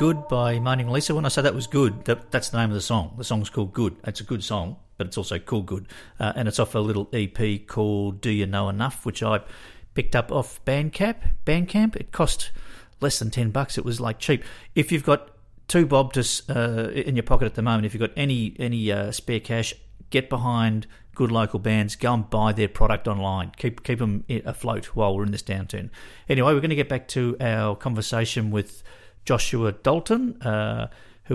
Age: 40-59